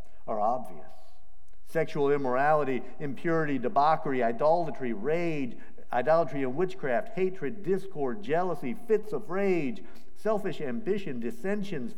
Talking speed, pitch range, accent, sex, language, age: 100 wpm, 120-205 Hz, American, male, English, 50-69